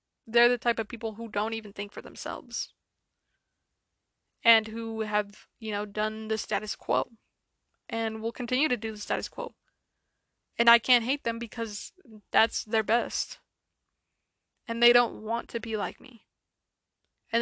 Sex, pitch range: female, 215-235 Hz